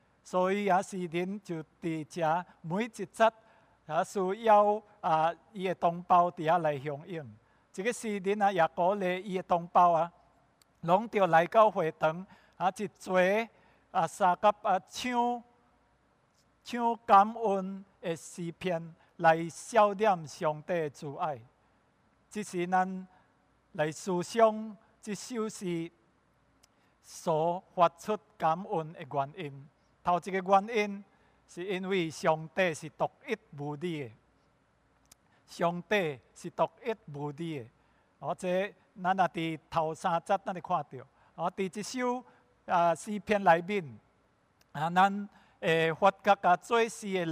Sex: male